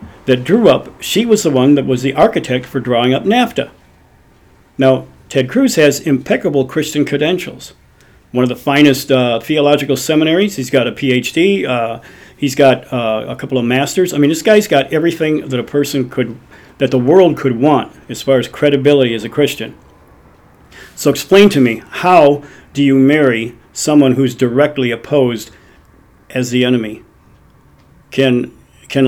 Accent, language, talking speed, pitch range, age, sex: American, English, 165 wpm, 125-150 Hz, 50-69, male